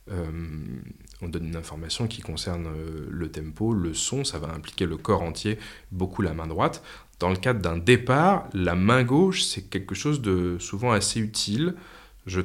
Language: French